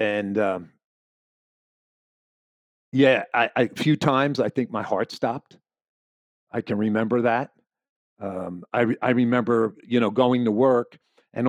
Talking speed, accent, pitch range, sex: 145 wpm, American, 110-140 Hz, male